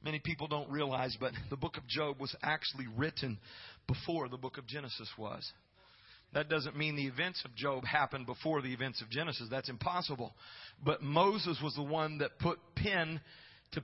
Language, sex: English, male